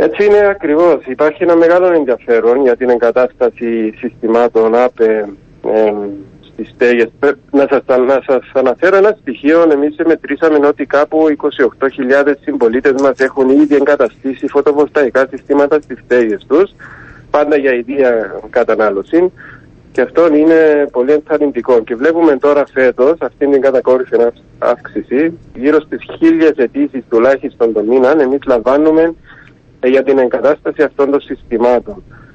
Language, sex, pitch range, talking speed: Greek, male, 125-150 Hz, 125 wpm